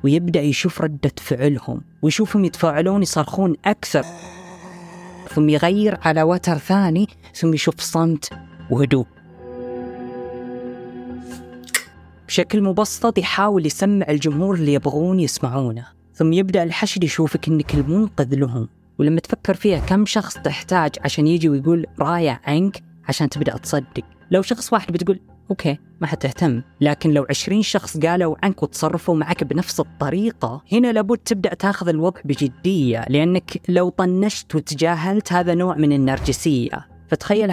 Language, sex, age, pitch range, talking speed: Arabic, female, 20-39, 140-185 Hz, 125 wpm